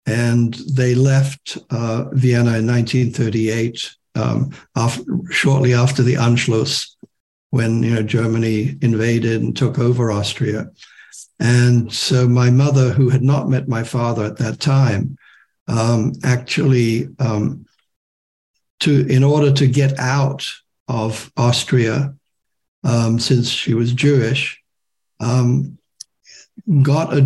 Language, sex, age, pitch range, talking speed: English, male, 60-79, 120-140 Hz, 115 wpm